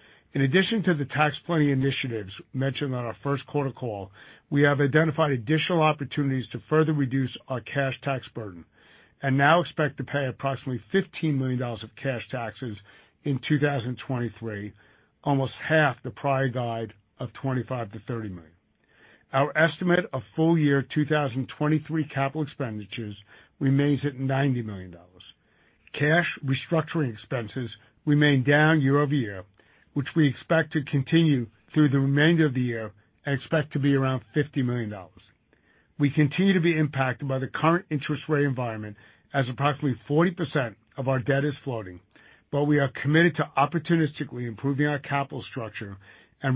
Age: 50-69